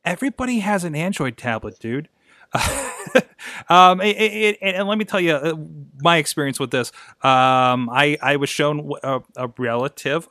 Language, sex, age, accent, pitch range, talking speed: English, male, 30-49, American, 125-150 Hz, 145 wpm